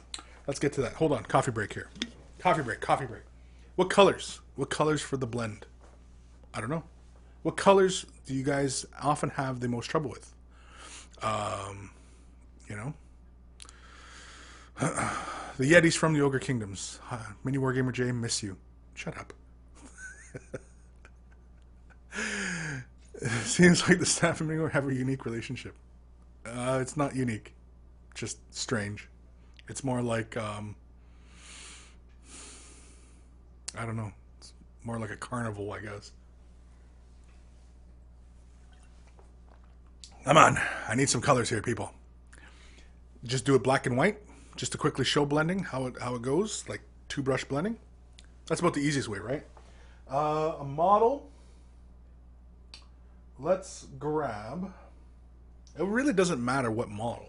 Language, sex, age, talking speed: English, male, 20-39, 130 wpm